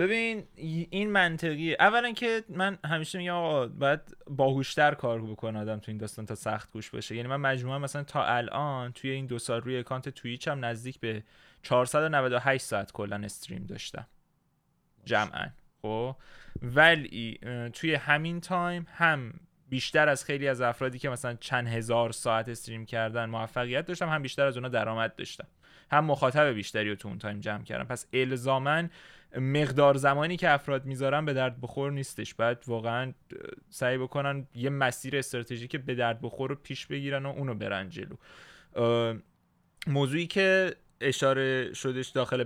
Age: 20-39